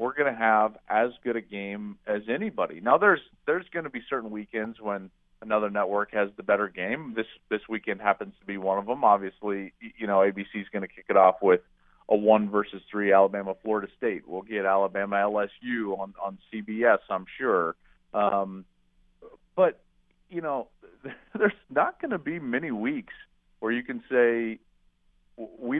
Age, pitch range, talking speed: 40-59, 100-120 Hz, 175 wpm